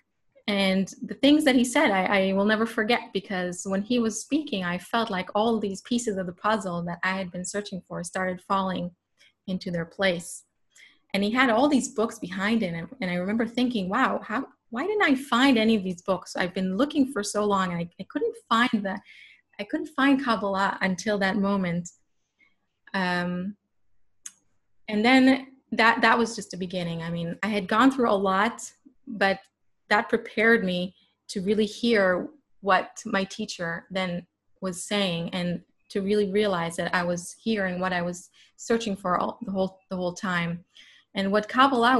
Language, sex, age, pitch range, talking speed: English, female, 30-49, 185-230 Hz, 185 wpm